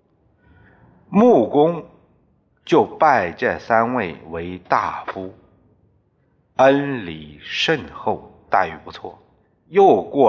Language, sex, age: Chinese, male, 60-79